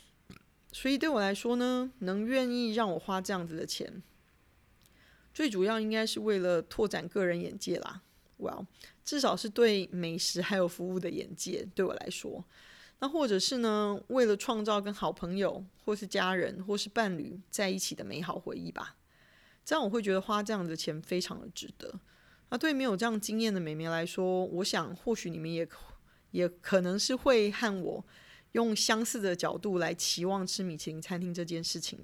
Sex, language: female, Chinese